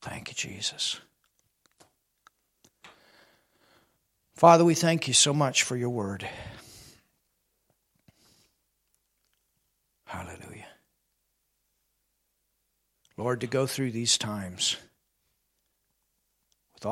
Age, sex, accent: 50-69, male, American